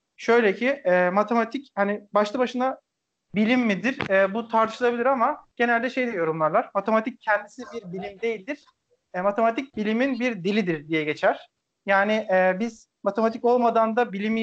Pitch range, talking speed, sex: 195-230 Hz, 145 wpm, male